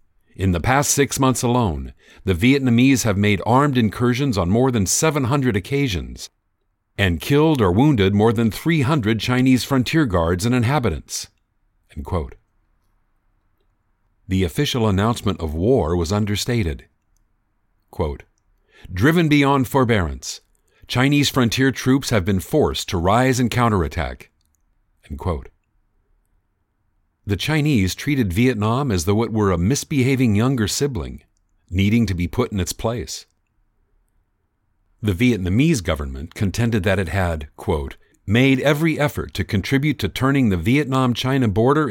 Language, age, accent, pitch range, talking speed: English, 50-69, American, 90-130 Hz, 130 wpm